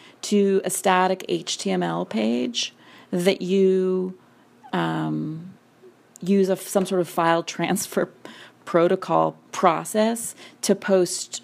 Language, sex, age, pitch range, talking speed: English, female, 30-49, 170-205 Hz, 105 wpm